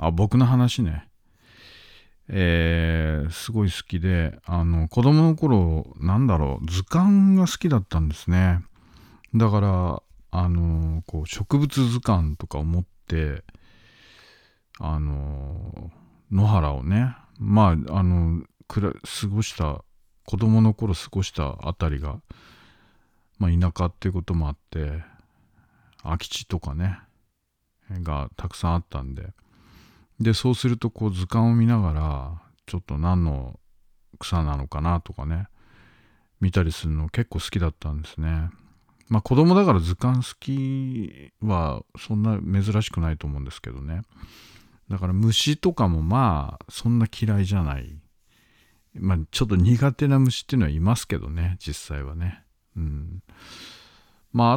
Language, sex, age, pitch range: Japanese, male, 40-59, 80-110 Hz